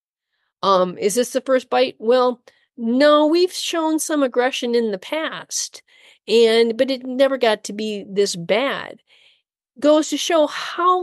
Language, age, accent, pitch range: English, 40-59, American, 230-305 Hz